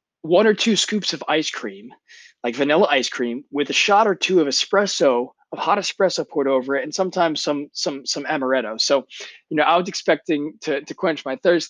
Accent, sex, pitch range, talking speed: American, male, 130-160 Hz, 210 wpm